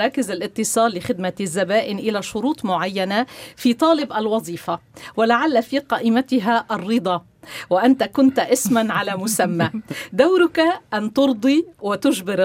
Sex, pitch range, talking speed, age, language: female, 180-245 Hz, 110 wpm, 50-69, Arabic